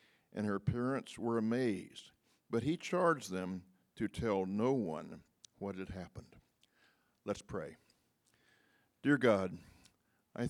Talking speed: 120 wpm